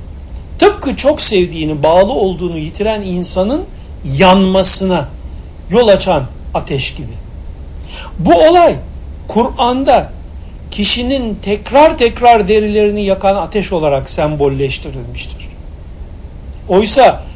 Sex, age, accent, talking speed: male, 60-79, native, 85 wpm